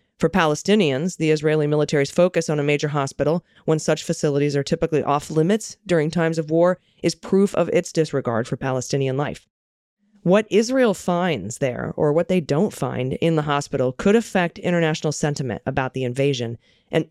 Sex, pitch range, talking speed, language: female, 140-170 Hz, 170 wpm, English